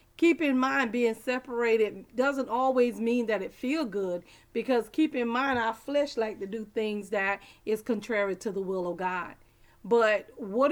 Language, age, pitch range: English, 40-59, 190-235 Hz